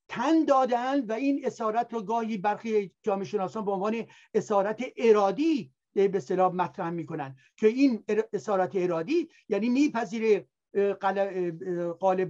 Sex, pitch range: male, 190-245 Hz